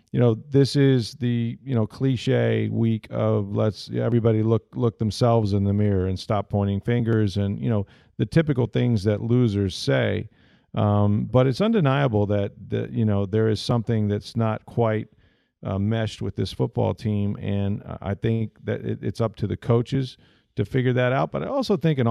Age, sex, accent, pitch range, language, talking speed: 40-59, male, American, 105-120 Hz, English, 190 wpm